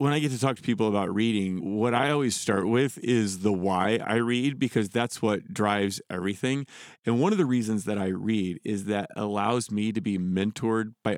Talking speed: 215 wpm